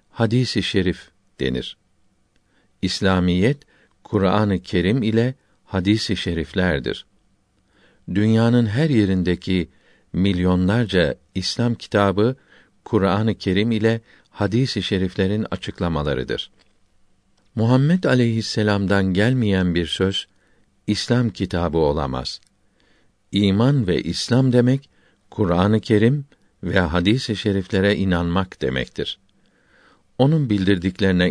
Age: 50-69